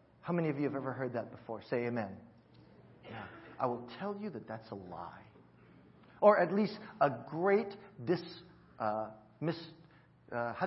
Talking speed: 170 wpm